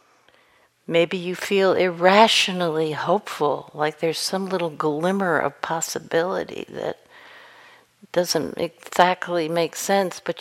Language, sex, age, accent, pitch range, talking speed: English, female, 60-79, American, 160-205 Hz, 105 wpm